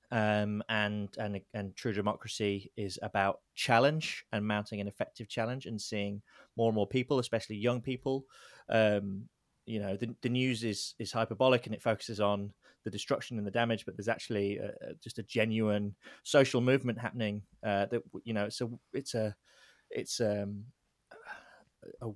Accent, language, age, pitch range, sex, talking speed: British, English, 20-39, 105-120 Hz, male, 170 wpm